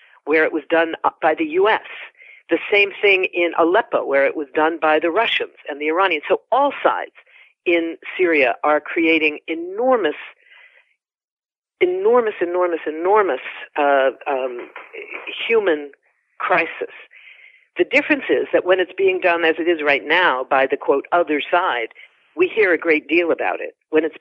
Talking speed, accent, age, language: 160 wpm, American, 50-69, English